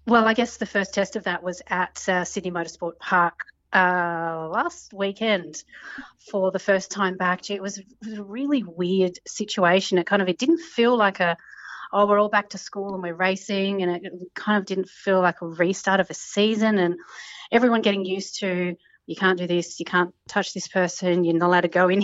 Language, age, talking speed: English, 30-49, 210 wpm